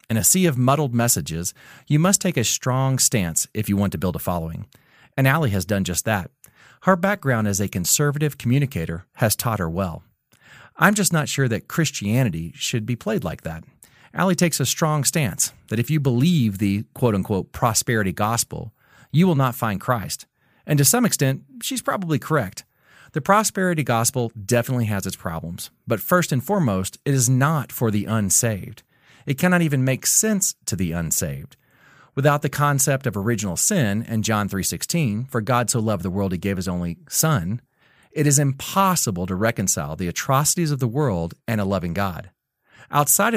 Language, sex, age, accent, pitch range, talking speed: English, male, 40-59, American, 100-145 Hz, 180 wpm